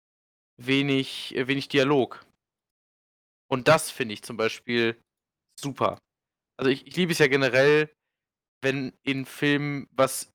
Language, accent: German, German